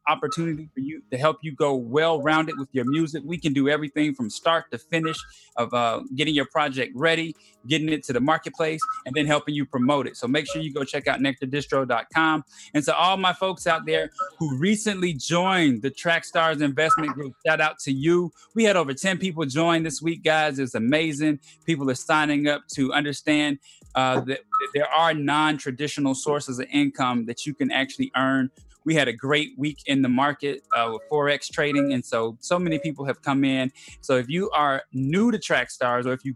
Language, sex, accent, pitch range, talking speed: English, male, American, 135-160 Hz, 205 wpm